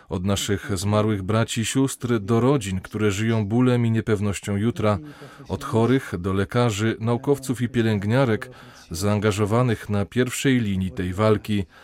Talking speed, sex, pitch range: 135 wpm, male, 105-125 Hz